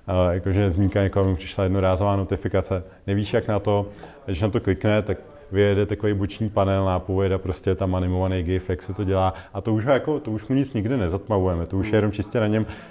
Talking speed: 220 wpm